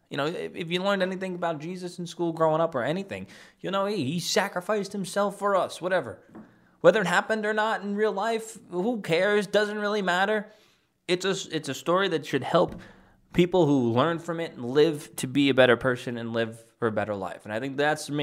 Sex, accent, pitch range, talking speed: male, American, 125-180 Hz, 215 wpm